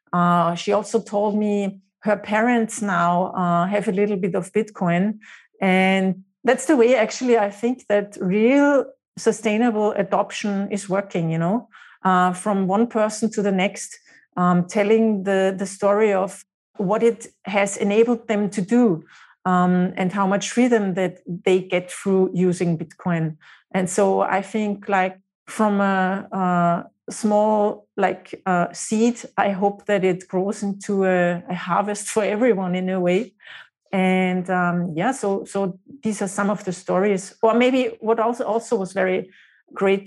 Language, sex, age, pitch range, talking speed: English, female, 40-59, 185-215 Hz, 160 wpm